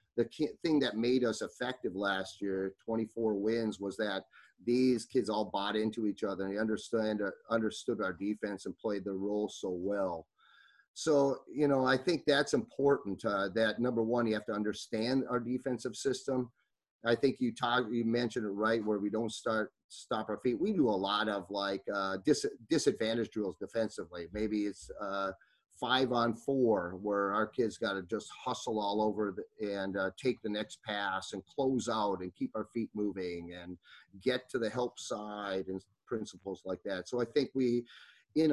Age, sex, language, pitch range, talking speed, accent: 30-49, male, English, 100-120 Hz, 185 wpm, American